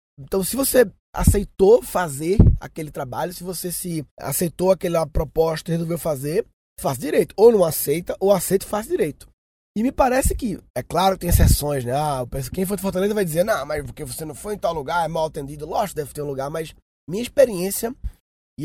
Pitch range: 155-195 Hz